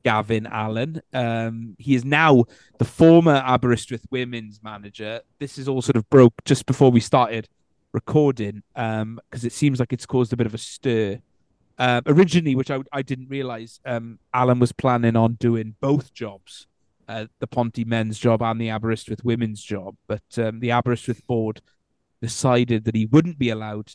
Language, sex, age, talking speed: English, male, 30-49, 175 wpm